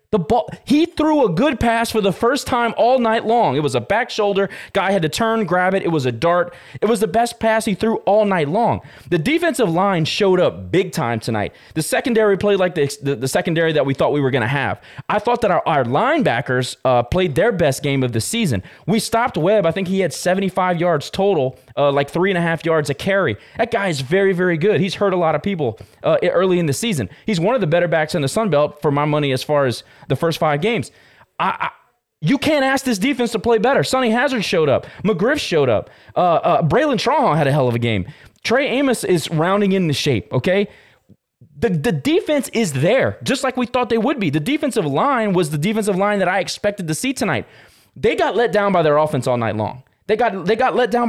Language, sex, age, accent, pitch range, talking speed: English, male, 20-39, American, 150-230 Hz, 245 wpm